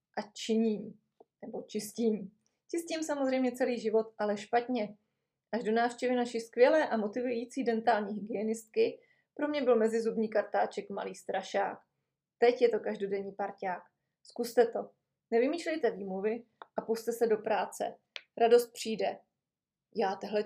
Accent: native